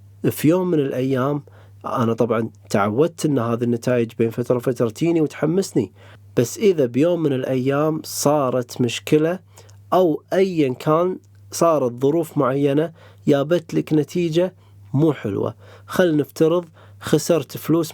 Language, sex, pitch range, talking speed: Arabic, male, 110-150 Hz, 125 wpm